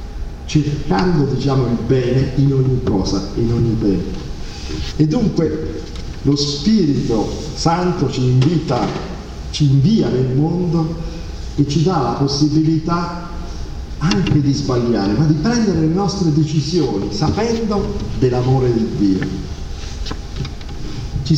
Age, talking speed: 50-69, 110 wpm